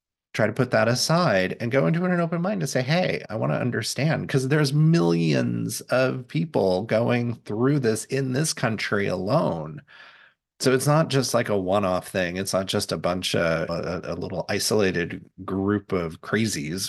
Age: 30-49